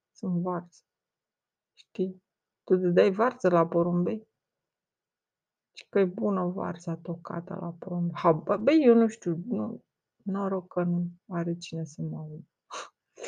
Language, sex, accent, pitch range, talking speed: Romanian, female, native, 165-205 Hz, 145 wpm